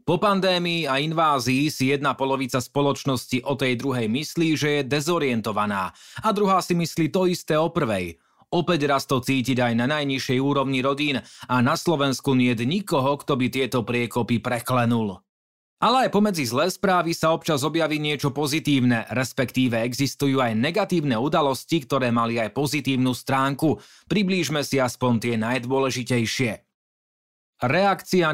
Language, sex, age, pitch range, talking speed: Slovak, male, 30-49, 125-160 Hz, 145 wpm